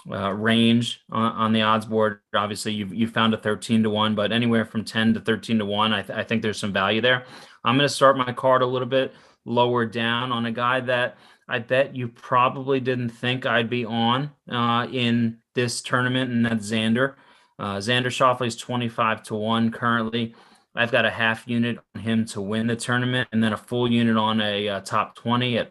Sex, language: male, English